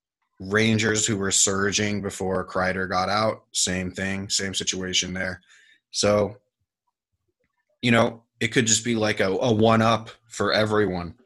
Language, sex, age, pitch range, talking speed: English, male, 20-39, 95-110 Hz, 145 wpm